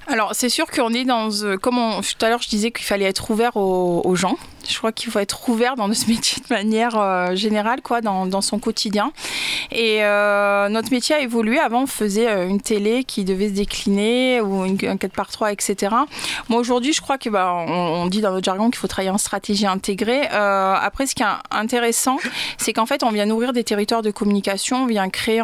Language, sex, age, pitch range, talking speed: French, female, 20-39, 195-235 Hz, 225 wpm